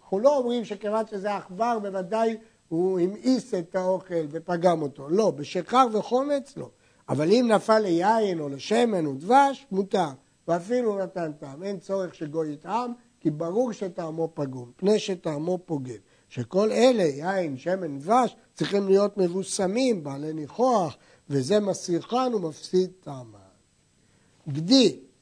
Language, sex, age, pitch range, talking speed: Hebrew, male, 60-79, 170-225 Hz, 130 wpm